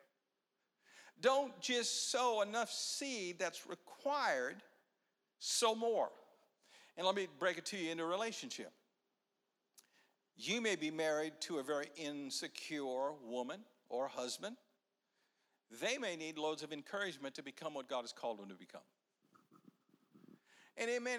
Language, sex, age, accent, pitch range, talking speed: English, male, 50-69, American, 140-220 Hz, 135 wpm